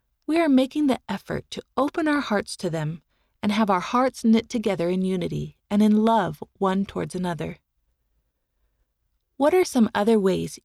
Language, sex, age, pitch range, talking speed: English, female, 30-49, 170-225 Hz, 170 wpm